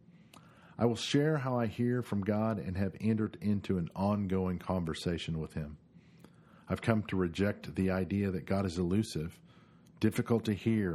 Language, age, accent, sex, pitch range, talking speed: English, 50-69, American, male, 85-110 Hz, 165 wpm